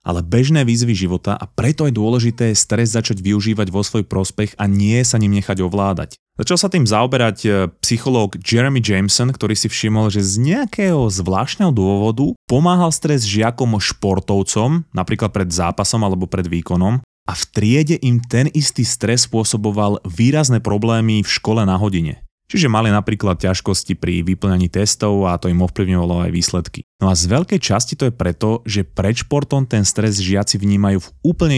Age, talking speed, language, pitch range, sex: 20-39, 175 wpm, Slovak, 100-120 Hz, male